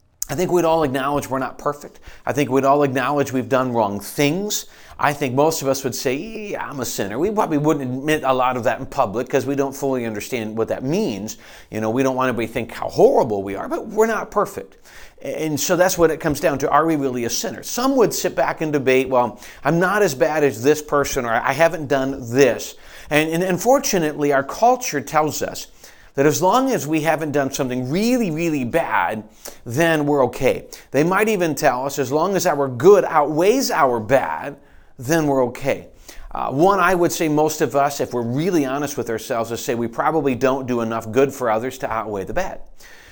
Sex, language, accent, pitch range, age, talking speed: male, English, American, 125-155 Hz, 40-59, 225 wpm